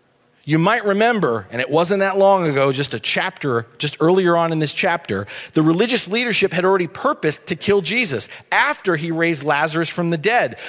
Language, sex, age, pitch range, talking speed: English, male, 40-59, 135-185 Hz, 190 wpm